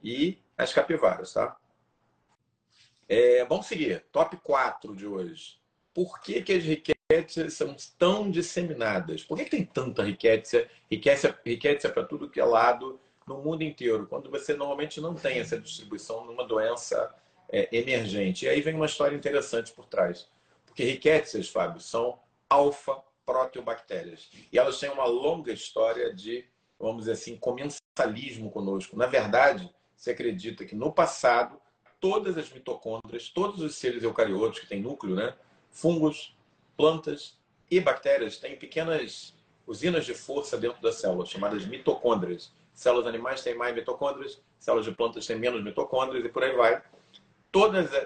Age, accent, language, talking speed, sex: 40-59, Brazilian, Portuguese, 145 wpm, male